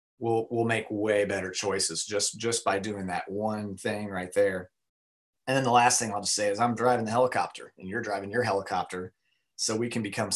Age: 30-49